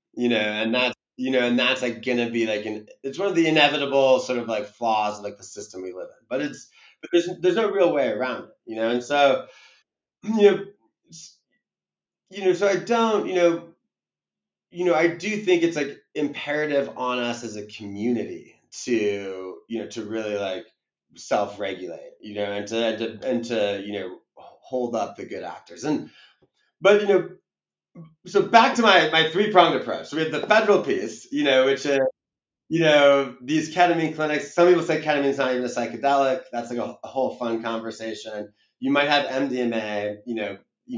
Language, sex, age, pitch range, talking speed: English, male, 30-49, 110-160 Hz, 200 wpm